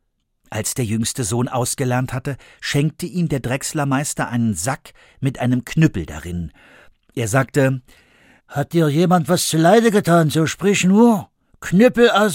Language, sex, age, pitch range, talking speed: German, male, 60-79, 125-195 Hz, 145 wpm